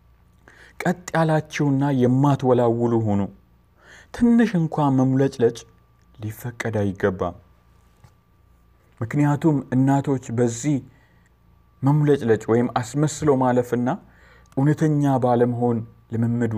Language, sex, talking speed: Amharic, male, 70 wpm